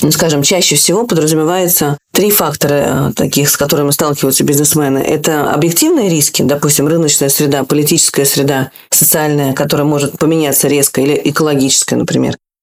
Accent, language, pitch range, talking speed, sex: native, Russian, 145-180 Hz, 130 wpm, female